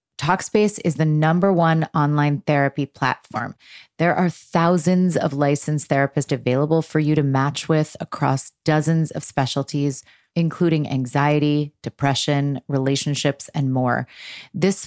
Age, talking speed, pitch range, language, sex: 30-49, 125 wpm, 140-160 Hz, English, female